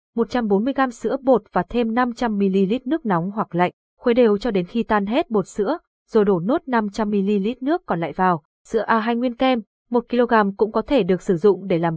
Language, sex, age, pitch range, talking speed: Vietnamese, female, 20-39, 190-235 Hz, 200 wpm